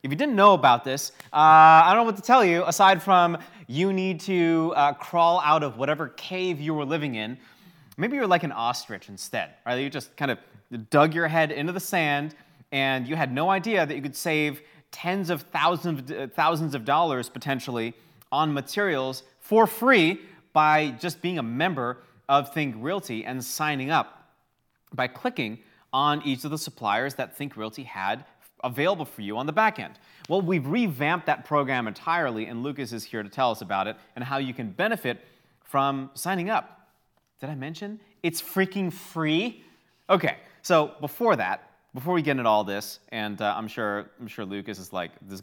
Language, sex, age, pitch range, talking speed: English, male, 30-49, 125-180 Hz, 190 wpm